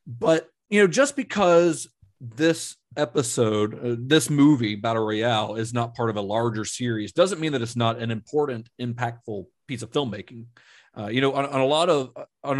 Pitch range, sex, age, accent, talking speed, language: 105-130 Hz, male, 40-59, American, 185 wpm, English